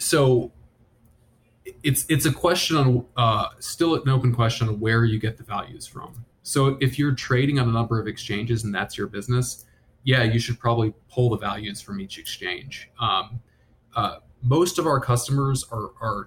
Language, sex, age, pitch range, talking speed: English, male, 20-39, 110-125 Hz, 180 wpm